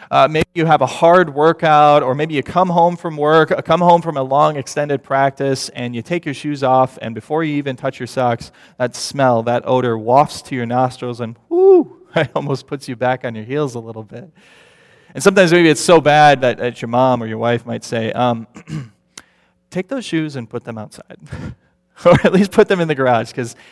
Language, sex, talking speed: English, male, 220 wpm